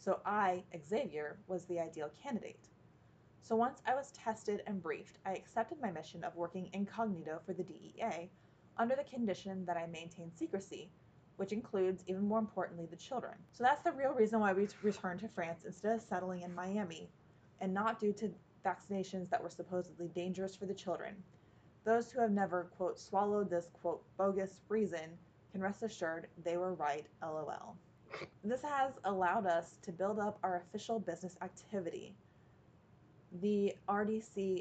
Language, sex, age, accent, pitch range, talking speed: English, female, 20-39, American, 175-210 Hz, 165 wpm